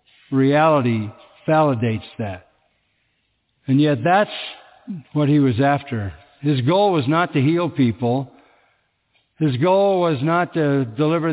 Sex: male